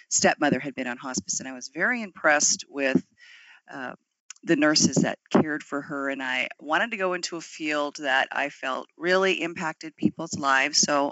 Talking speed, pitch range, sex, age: 185 wpm, 150-205 Hz, female, 40-59